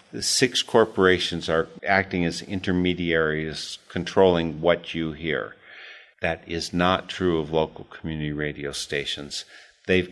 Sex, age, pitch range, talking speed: male, 50-69, 80-95 Hz, 125 wpm